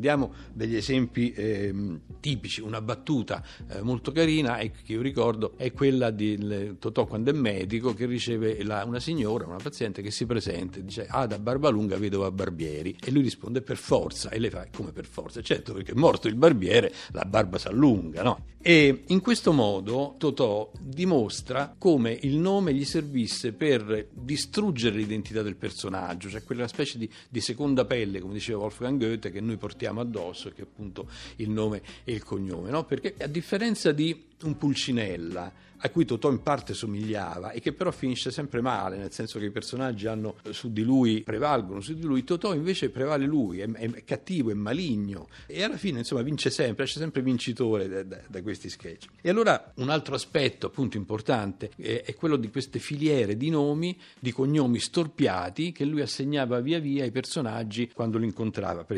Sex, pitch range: male, 105-140 Hz